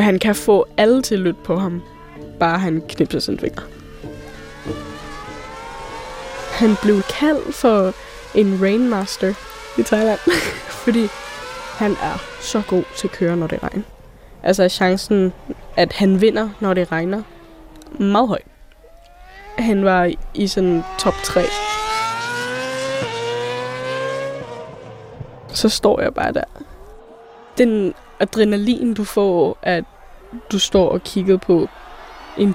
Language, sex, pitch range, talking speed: Danish, female, 180-225 Hz, 120 wpm